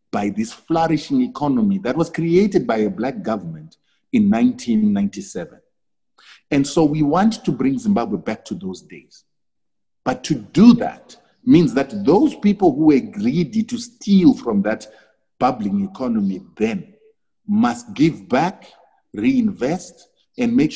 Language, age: English, 50-69